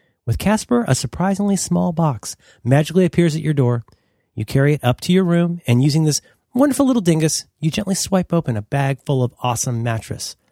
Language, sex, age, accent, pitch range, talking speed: English, male, 30-49, American, 125-180 Hz, 195 wpm